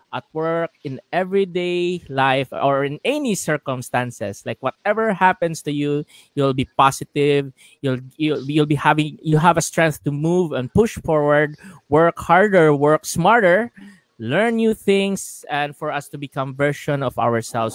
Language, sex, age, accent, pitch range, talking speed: English, male, 20-39, Filipino, 130-160 Hz, 160 wpm